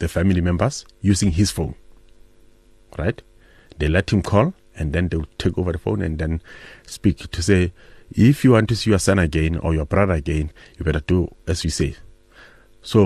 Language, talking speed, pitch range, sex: English, 200 wpm, 85-100 Hz, male